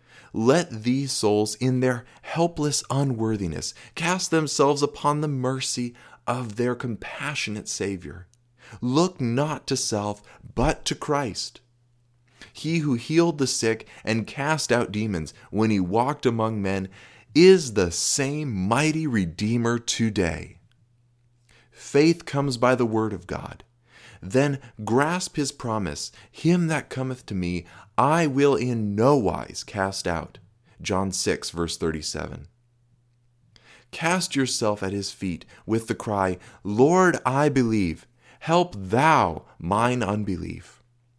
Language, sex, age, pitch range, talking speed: English, male, 30-49, 105-130 Hz, 125 wpm